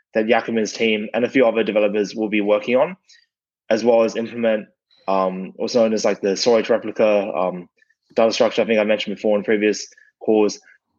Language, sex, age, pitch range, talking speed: English, male, 20-39, 105-120 Hz, 190 wpm